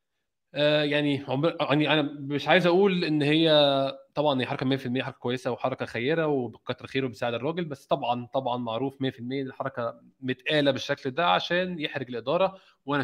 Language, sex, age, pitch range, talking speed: Arabic, male, 20-39, 125-150 Hz, 155 wpm